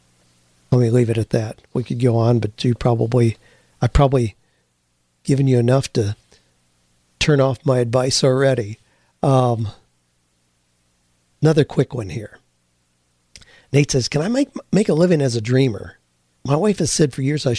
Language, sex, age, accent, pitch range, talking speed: English, male, 50-69, American, 110-140 Hz, 160 wpm